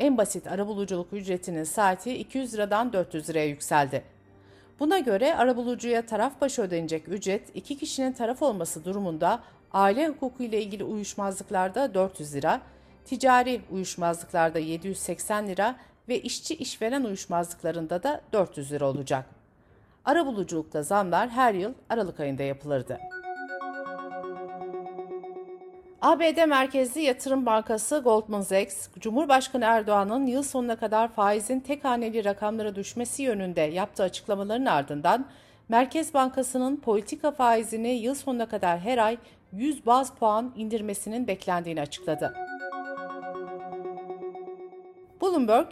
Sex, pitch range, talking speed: female, 185-255 Hz, 110 wpm